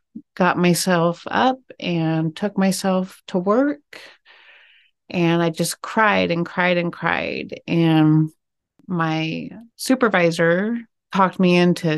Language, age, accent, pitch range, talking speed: English, 30-49, American, 155-180 Hz, 110 wpm